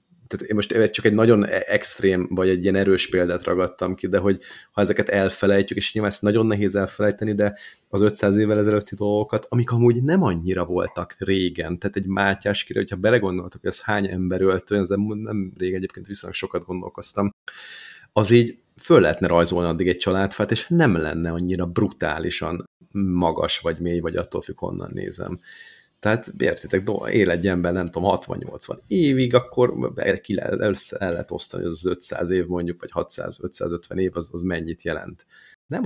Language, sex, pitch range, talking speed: Hungarian, male, 90-105 Hz, 170 wpm